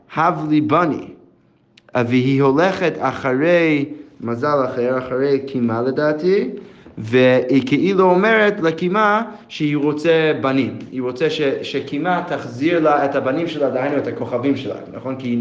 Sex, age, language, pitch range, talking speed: male, 30-49, Hebrew, 125-165 Hz, 130 wpm